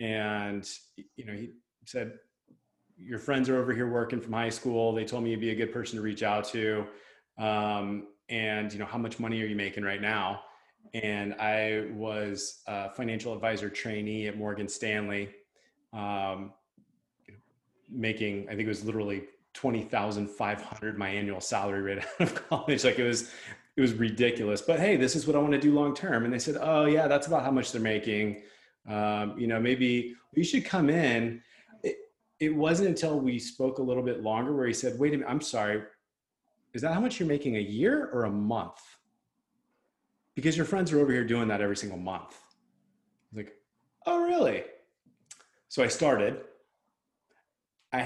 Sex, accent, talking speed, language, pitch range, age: male, American, 185 wpm, English, 105-130 Hz, 30-49